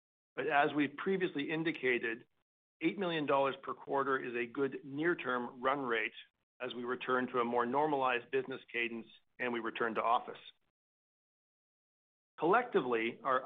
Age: 50-69